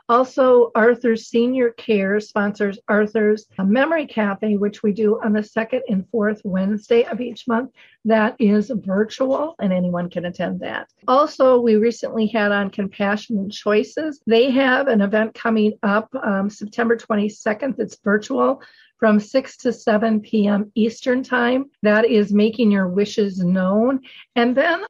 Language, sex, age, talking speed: English, female, 50-69, 150 wpm